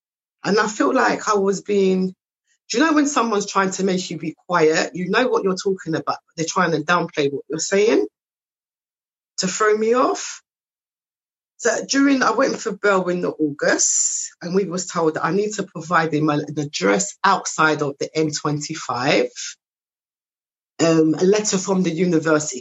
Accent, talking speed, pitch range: British, 175 wpm, 155-205 Hz